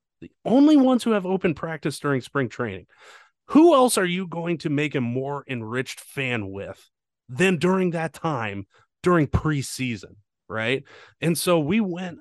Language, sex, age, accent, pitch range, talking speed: English, male, 30-49, American, 110-170 Hz, 160 wpm